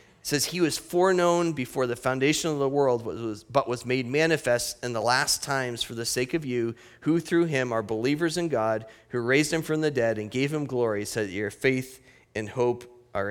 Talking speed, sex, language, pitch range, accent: 215 wpm, male, English, 125-160 Hz, American